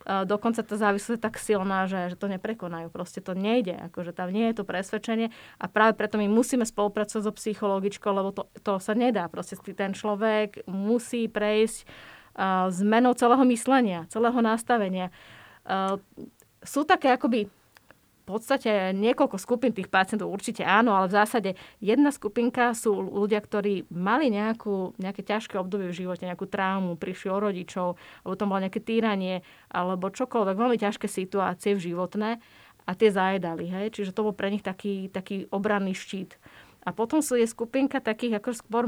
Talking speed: 160 wpm